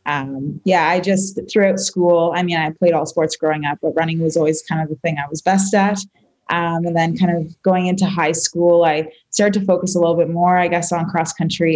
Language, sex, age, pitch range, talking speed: English, female, 20-39, 160-180 Hz, 245 wpm